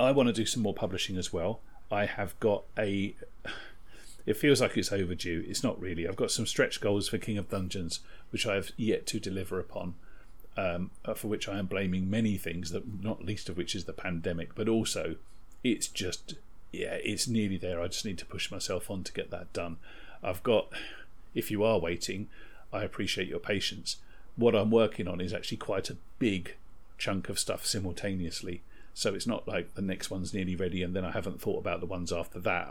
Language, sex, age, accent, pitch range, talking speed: English, male, 40-59, British, 90-110 Hz, 210 wpm